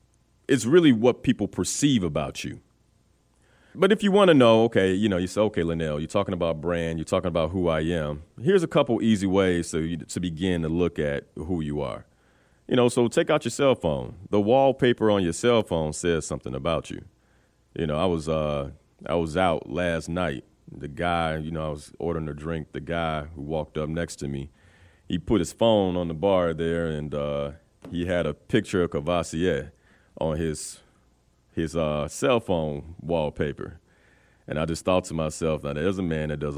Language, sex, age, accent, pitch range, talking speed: English, male, 30-49, American, 75-105 Hz, 205 wpm